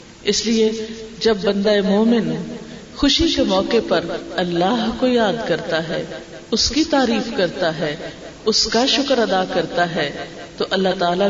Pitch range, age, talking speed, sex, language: 185-250 Hz, 50-69, 150 wpm, female, Urdu